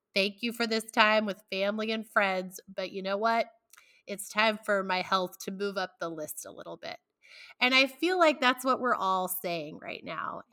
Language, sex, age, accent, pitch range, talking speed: English, female, 30-49, American, 180-230 Hz, 210 wpm